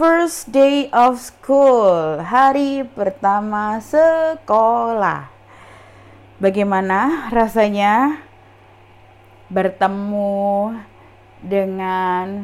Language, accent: Indonesian, native